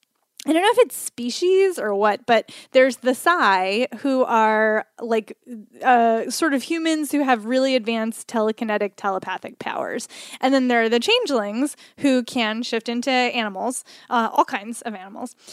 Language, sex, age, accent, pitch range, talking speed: English, female, 10-29, American, 220-275 Hz, 160 wpm